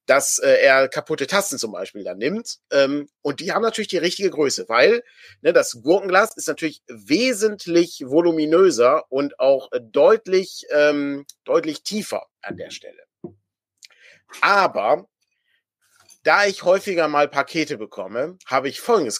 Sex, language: male, German